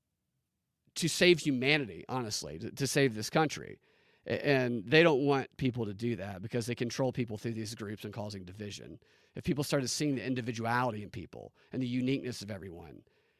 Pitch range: 130-170 Hz